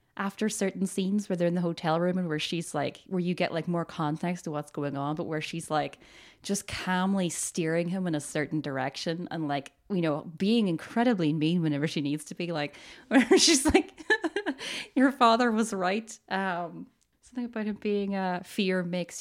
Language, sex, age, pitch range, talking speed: English, female, 10-29, 175-275 Hz, 200 wpm